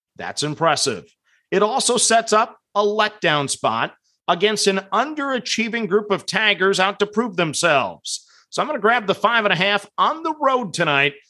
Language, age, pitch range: English, 40-59, 170-220 Hz